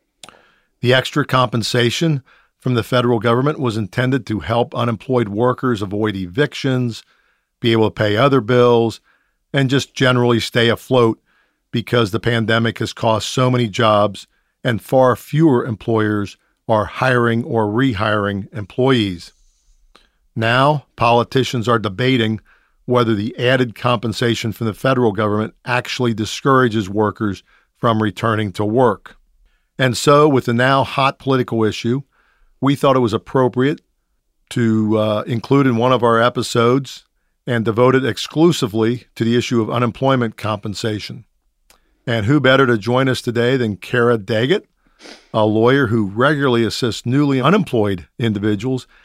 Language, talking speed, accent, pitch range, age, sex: English, 135 wpm, American, 110-130 Hz, 50-69, male